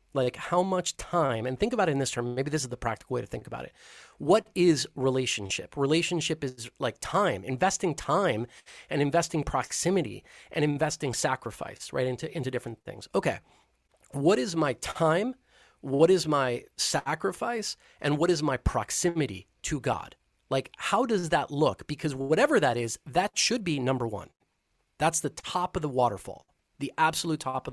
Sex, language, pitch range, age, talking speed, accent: male, English, 130-165 Hz, 30-49, 175 wpm, American